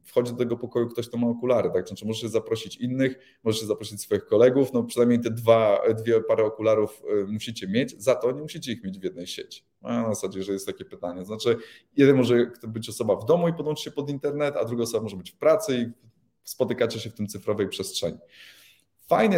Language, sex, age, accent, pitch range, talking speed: Polish, male, 20-39, native, 110-150 Hz, 215 wpm